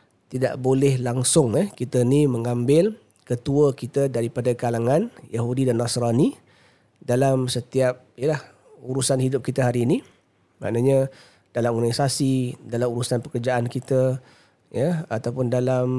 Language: Malay